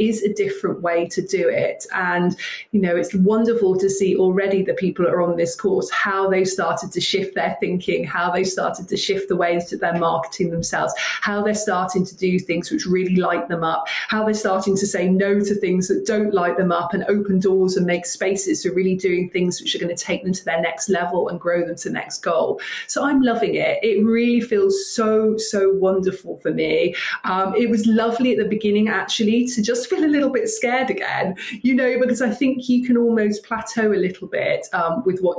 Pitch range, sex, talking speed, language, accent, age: 185-230 Hz, female, 225 wpm, English, British, 20-39